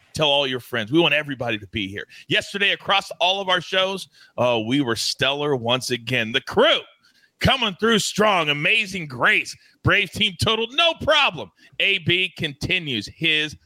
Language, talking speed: English, 165 wpm